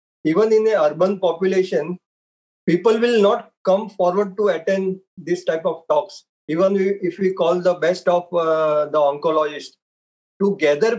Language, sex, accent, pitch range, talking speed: English, male, Indian, 165-205 Hz, 155 wpm